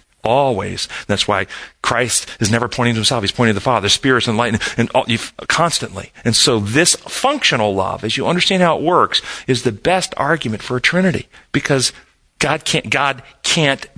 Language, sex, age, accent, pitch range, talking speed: English, male, 40-59, American, 105-140 Hz, 185 wpm